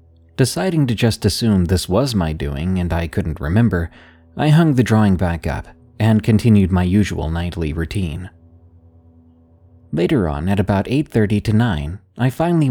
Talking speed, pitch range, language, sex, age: 155 wpm, 85-115 Hz, English, male, 30-49